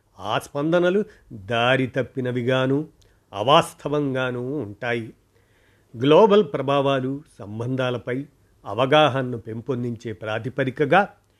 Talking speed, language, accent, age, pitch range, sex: 60 wpm, Telugu, native, 50-69, 115-150 Hz, male